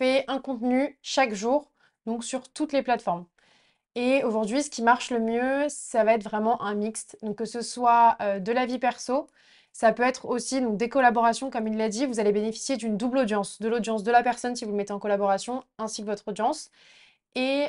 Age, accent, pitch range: 20-39, French, 215-250 Hz